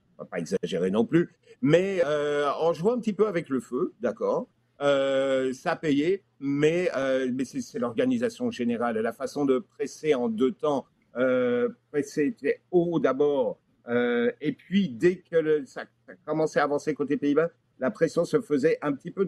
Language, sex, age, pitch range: French, male, 50-69, 130-190 Hz